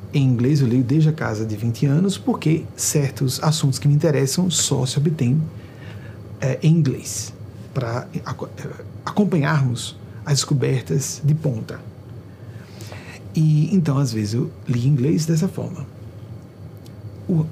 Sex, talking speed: male, 135 wpm